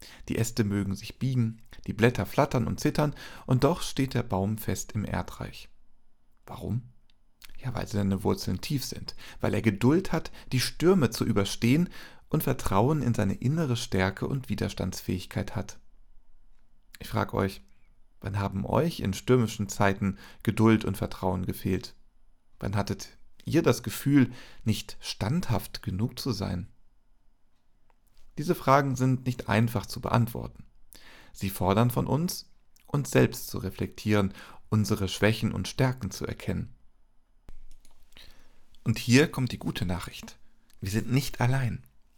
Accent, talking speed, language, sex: German, 135 wpm, German, male